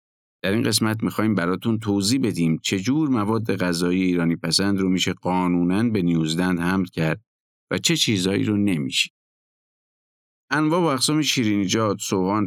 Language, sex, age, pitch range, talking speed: Persian, male, 50-69, 90-125 Hz, 145 wpm